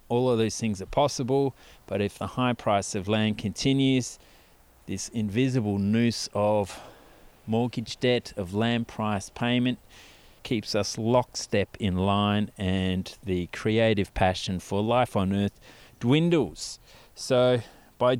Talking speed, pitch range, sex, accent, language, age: 130 wpm, 100-120 Hz, male, Australian, English, 30-49